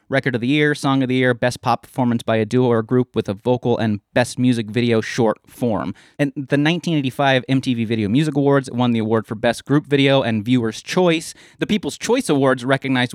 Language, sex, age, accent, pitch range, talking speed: English, male, 30-49, American, 110-135 Hz, 215 wpm